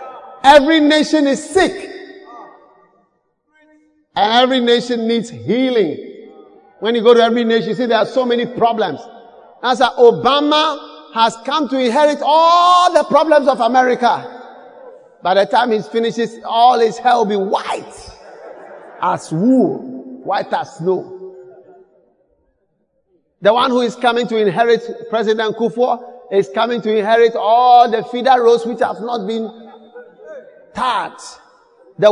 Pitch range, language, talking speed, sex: 230-315 Hz, English, 135 wpm, male